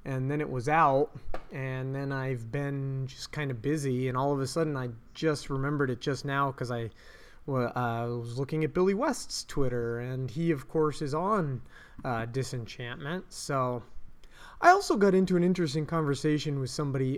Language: English